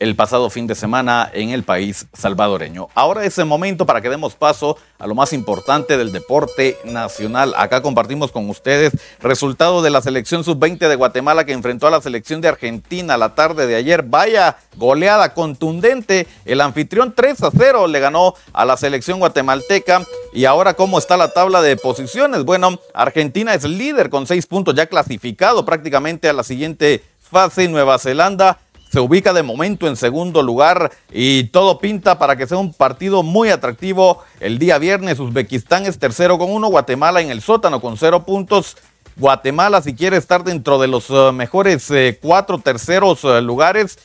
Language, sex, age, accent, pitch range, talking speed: Spanish, male, 40-59, Mexican, 130-185 Hz, 175 wpm